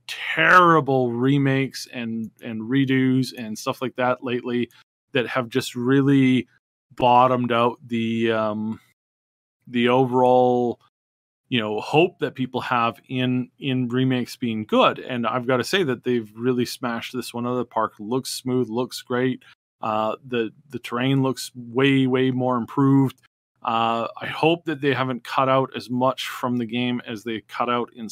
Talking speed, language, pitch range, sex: 165 wpm, English, 115-130 Hz, male